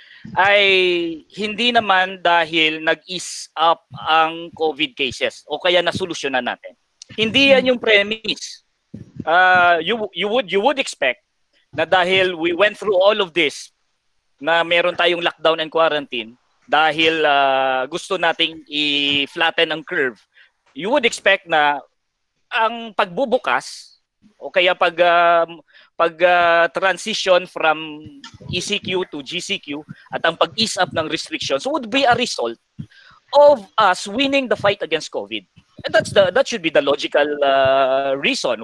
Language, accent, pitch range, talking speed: Filipino, native, 155-205 Hz, 135 wpm